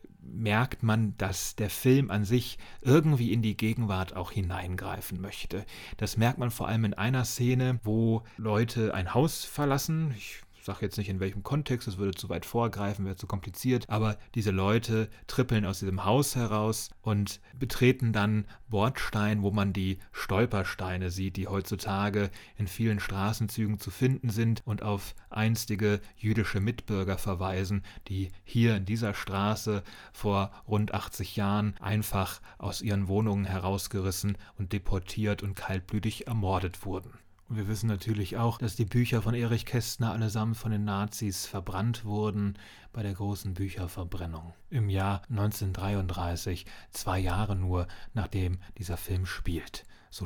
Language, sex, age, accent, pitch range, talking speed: German, male, 30-49, German, 100-115 Hz, 150 wpm